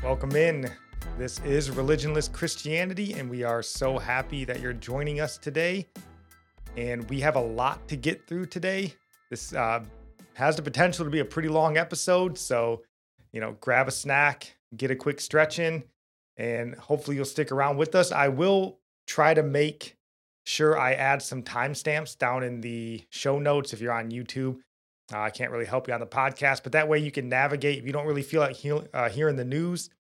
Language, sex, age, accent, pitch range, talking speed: English, male, 30-49, American, 120-150 Hz, 195 wpm